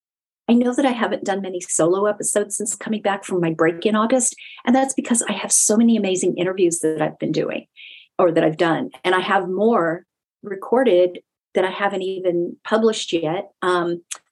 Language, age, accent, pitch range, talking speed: English, 40-59, American, 180-220 Hz, 195 wpm